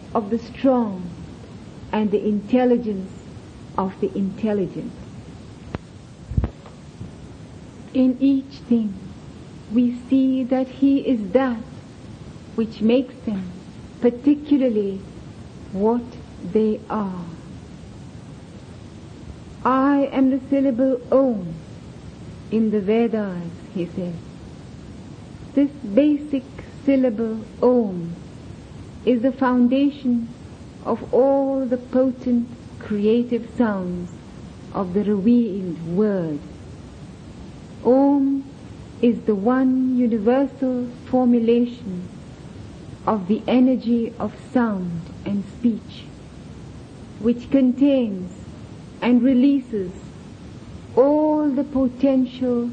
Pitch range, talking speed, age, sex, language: 205-260 Hz, 80 wpm, 40-59, female, English